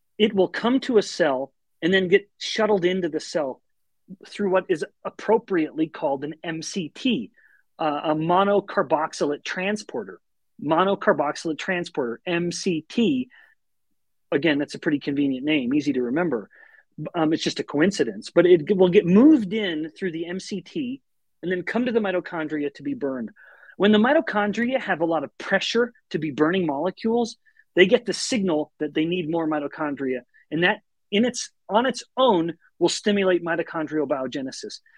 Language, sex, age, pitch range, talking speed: English, male, 30-49, 155-210 Hz, 155 wpm